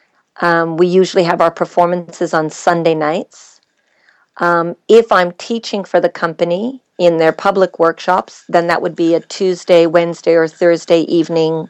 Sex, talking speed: female, 155 wpm